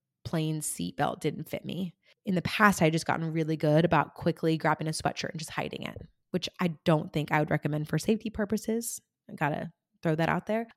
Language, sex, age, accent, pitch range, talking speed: English, female, 20-39, American, 155-200 Hz, 215 wpm